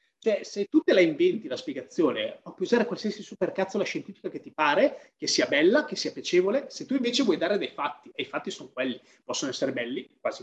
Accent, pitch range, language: native, 175-295 Hz, Italian